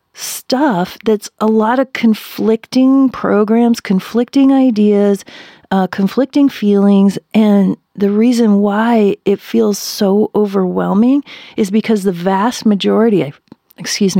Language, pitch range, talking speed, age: English, 190-230 Hz, 115 wpm, 40-59